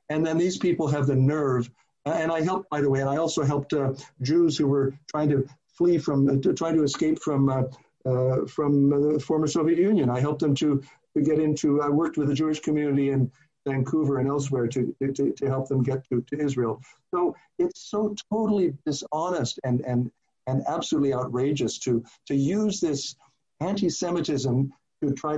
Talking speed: 190 wpm